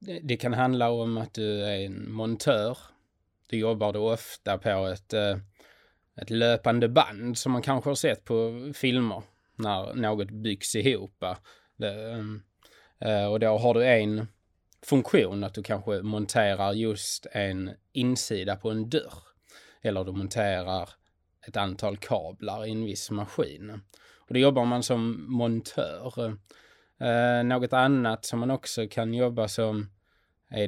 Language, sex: Swedish, male